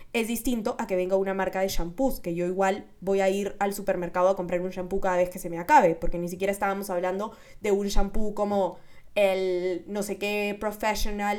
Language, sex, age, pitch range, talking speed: Spanish, female, 10-29, 185-235 Hz, 215 wpm